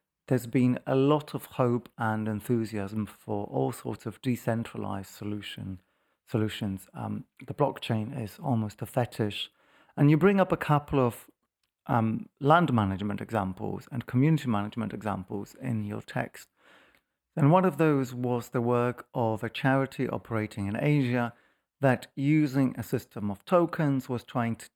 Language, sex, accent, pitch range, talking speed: English, male, British, 105-130 Hz, 150 wpm